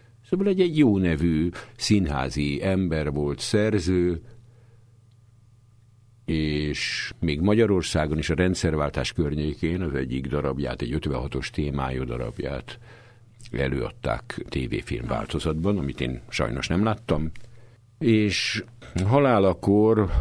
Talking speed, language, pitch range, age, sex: 90 wpm, Hungarian, 70-115 Hz, 60-79, male